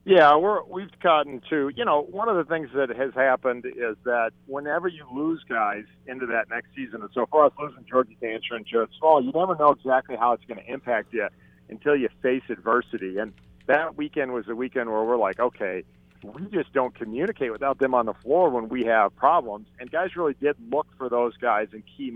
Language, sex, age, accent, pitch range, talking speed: English, male, 50-69, American, 110-135 Hz, 215 wpm